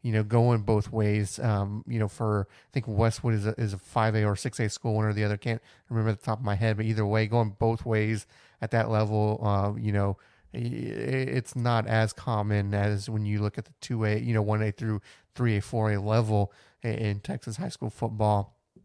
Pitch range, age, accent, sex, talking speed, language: 105-125 Hz, 30-49, American, male, 205 wpm, English